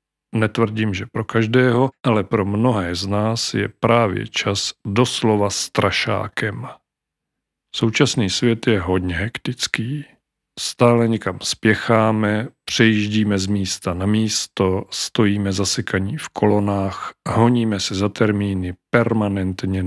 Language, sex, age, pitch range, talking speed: Czech, male, 40-59, 95-115 Hz, 110 wpm